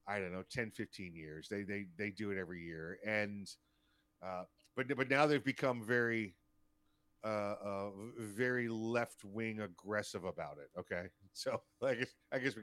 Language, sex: English, male